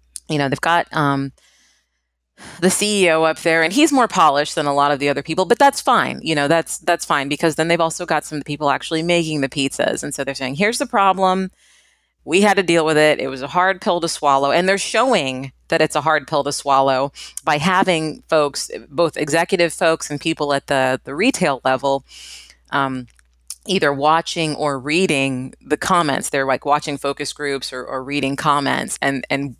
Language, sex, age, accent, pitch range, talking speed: English, female, 30-49, American, 140-180 Hz, 205 wpm